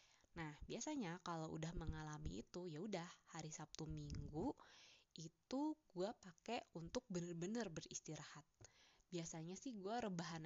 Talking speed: 120 wpm